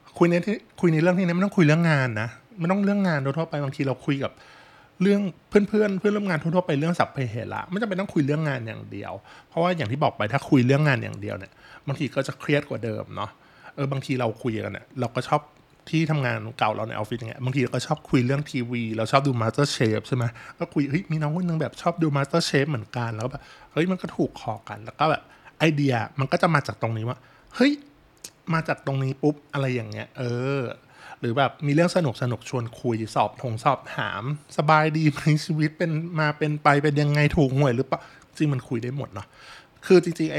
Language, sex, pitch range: Thai, male, 120-160 Hz